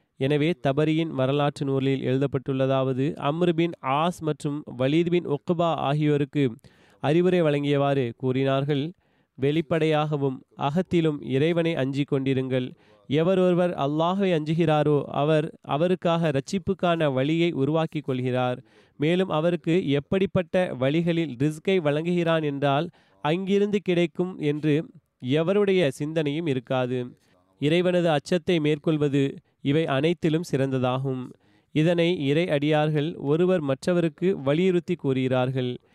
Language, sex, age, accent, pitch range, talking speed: Tamil, male, 30-49, native, 135-170 Hz, 95 wpm